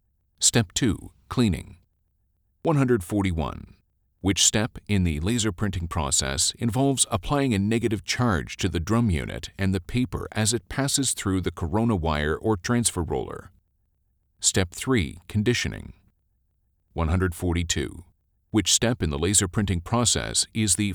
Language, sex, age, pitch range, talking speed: English, male, 40-59, 85-110 Hz, 130 wpm